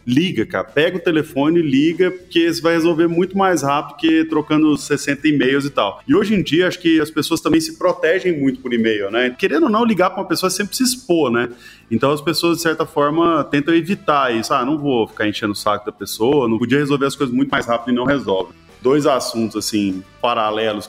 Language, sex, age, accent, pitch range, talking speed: Portuguese, male, 20-39, Brazilian, 120-175 Hz, 225 wpm